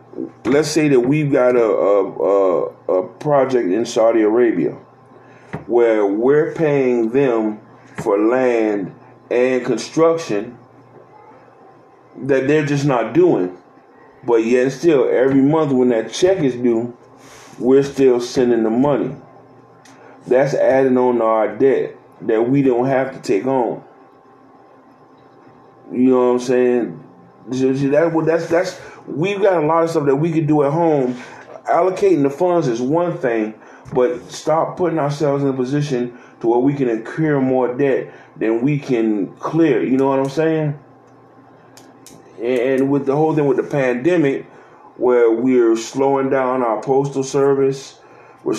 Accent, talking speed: American, 145 wpm